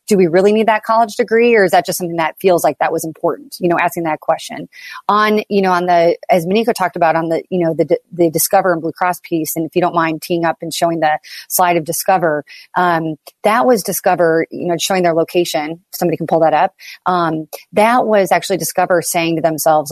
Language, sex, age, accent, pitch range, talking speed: English, female, 30-49, American, 165-195 Hz, 240 wpm